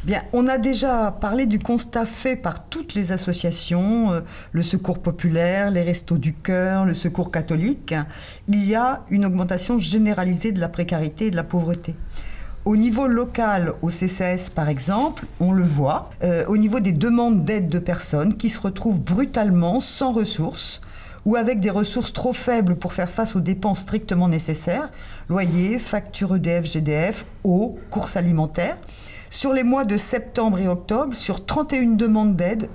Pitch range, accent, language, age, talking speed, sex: 175-230 Hz, French, French, 50-69, 165 wpm, female